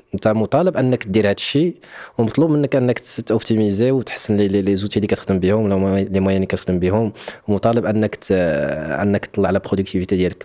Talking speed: 165 wpm